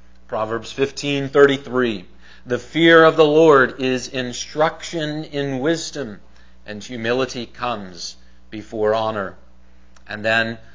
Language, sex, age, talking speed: English, male, 40-59, 110 wpm